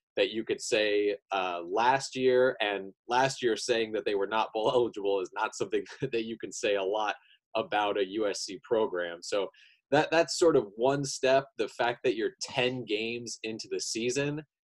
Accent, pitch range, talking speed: American, 110-180 Hz, 190 wpm